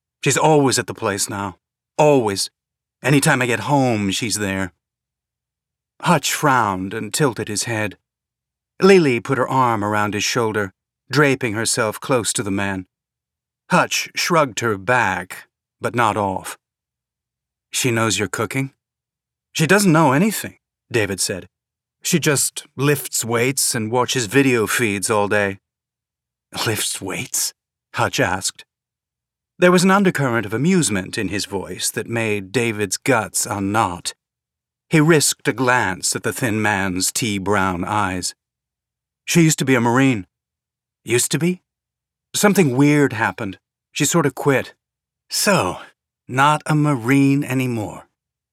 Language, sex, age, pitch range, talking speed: English, male, 40-59, 105-145 Hz, 130 wpm